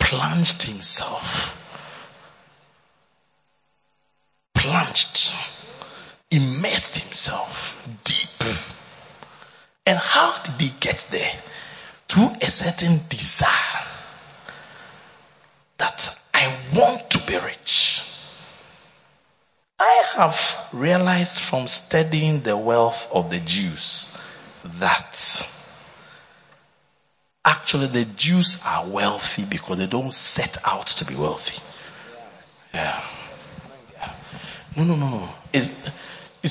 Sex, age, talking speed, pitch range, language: male, 50-69, 85 wpm, 125-175 Hz, English